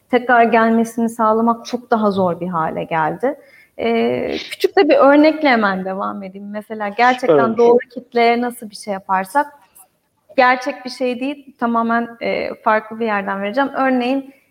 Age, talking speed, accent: 30-49, 140 wpm, native